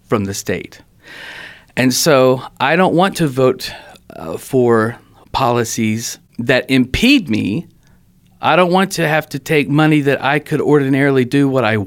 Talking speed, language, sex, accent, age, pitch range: 155 wpm, English, male, American, 40-59, 110-135 Hz